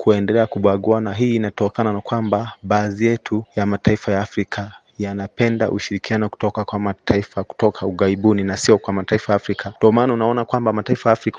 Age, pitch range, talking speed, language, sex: 30-49, 100-125 Hz, 165 wpm, Swahili, male